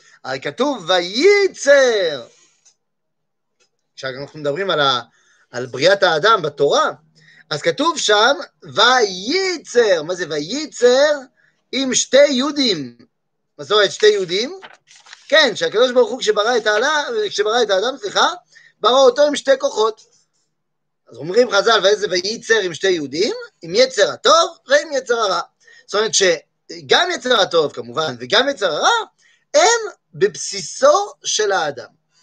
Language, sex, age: French, male, 30-49